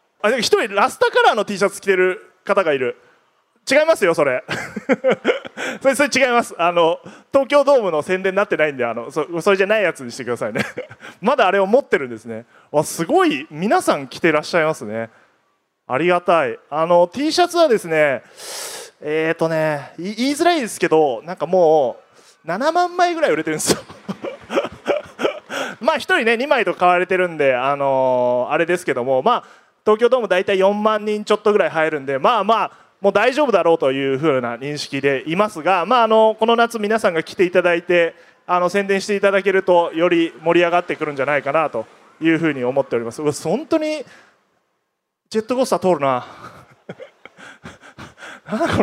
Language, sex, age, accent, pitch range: Japanese, male, 20-39, native, 155-260 Hz